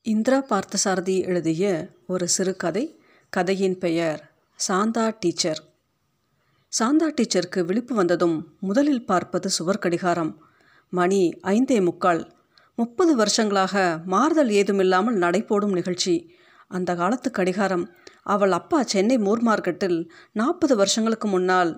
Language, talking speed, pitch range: Tamil, 100 wpm, 180-225 Hz